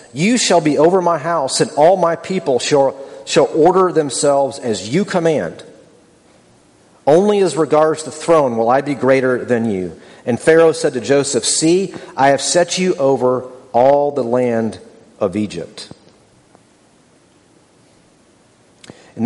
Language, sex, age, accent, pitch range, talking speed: English, male, 40-59, American, 125-165 Hz, 140 wpm